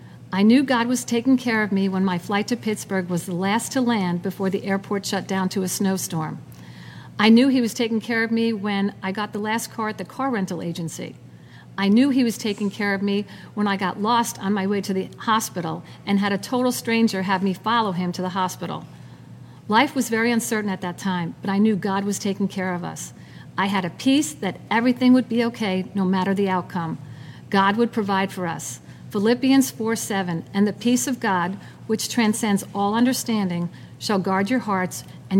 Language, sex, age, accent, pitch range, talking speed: English, female, 50-69, American, 185-225 Hz, 215 wpm